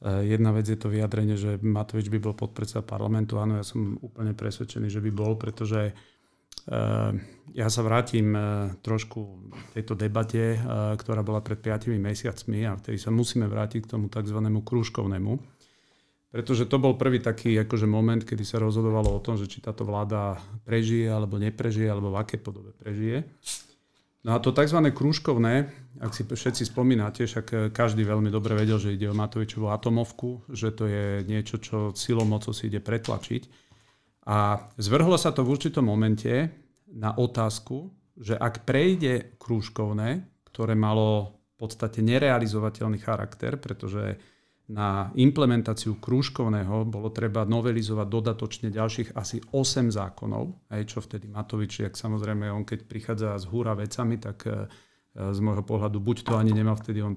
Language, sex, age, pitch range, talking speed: Slovak, male, 40-59, 105-120 Hz, 150 wpm